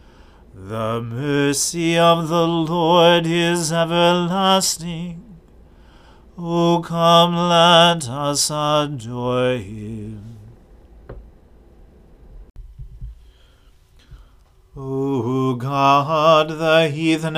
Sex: male